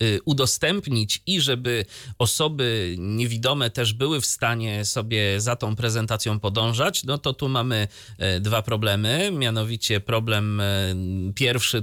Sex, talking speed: male, 115 wpm